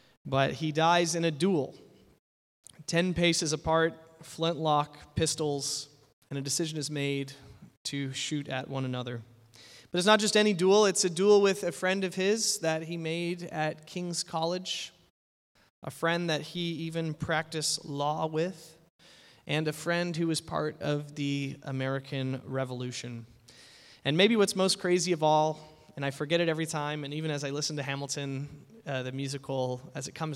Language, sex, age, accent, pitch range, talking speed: English, male, 30-49, American, 135-165 Hz, 170 wpm